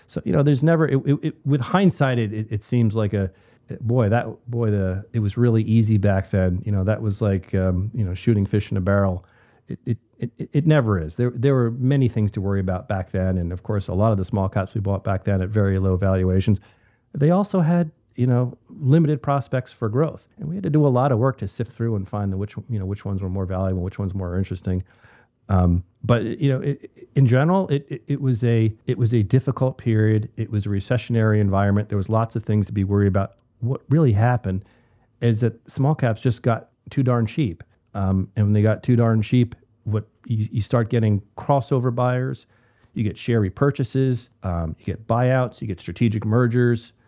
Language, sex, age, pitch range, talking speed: English, male, 40-59, 100-125 Hz, 225 wpm